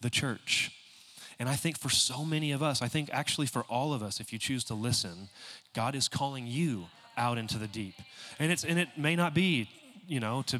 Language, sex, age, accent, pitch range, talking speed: English, male, 30-49, American, 115-150 Hz, 225 wpm